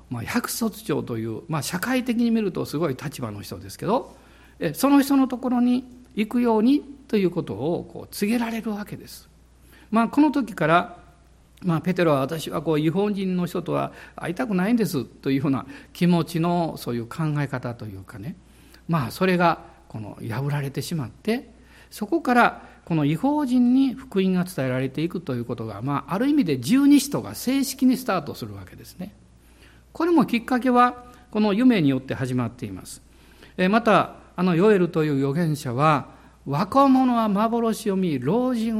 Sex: male